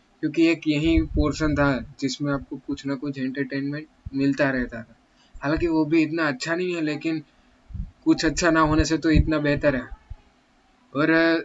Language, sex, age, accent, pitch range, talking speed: Hindi, male, 20-39, native, 140-160 Hz, 170 wpm